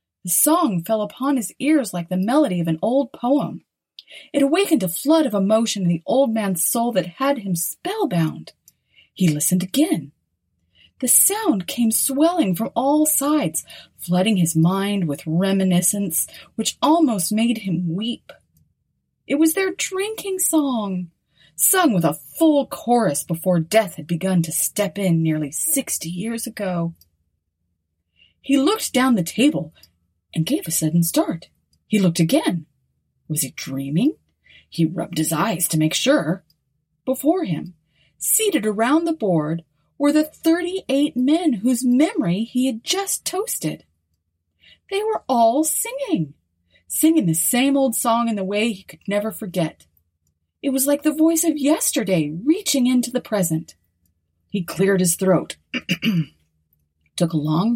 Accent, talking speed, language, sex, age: American, 150 wpm, English, female, 30-49